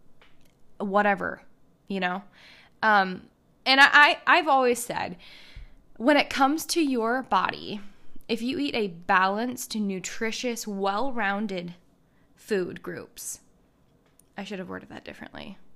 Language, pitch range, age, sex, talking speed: English, 185-235 Hz, 10-29, female, 120 wpm